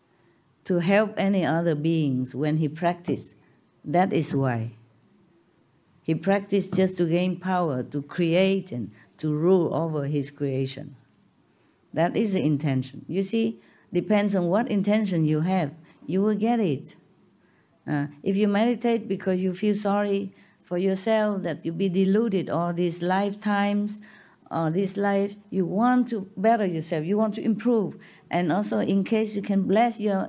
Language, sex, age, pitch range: Korean, female, 50-69, 160-215 Hz